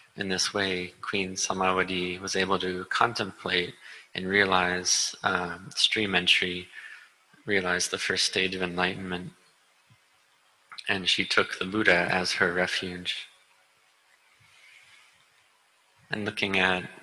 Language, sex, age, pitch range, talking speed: English, male, 20-39, 90-95 Hz, 110 wpm